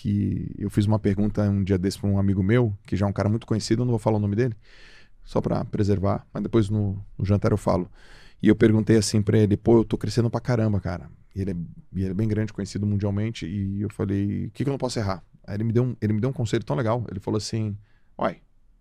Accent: Brazilian